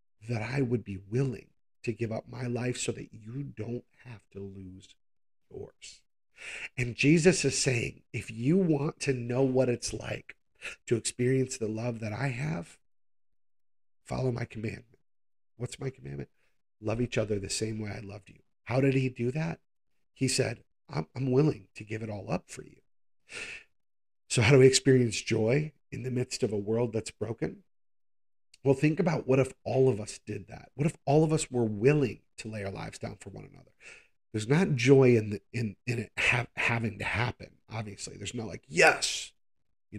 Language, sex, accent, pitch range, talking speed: English, male, American, 110-140 Hz, 190 wpm